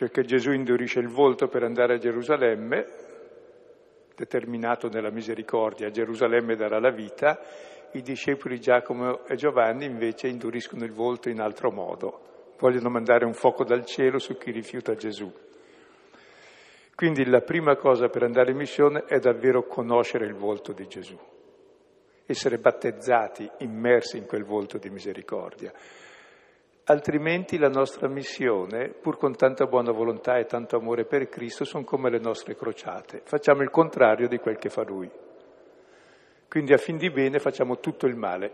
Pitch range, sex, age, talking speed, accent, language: 120-170 Hz, male, 60-79, 155 wpm, native, Italian